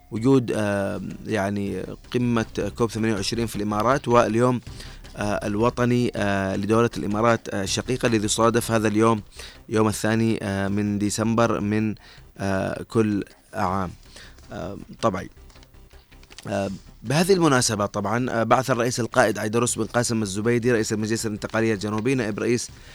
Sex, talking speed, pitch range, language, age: male, 125 wpm, 105-120 Hz, Arabic, 20-39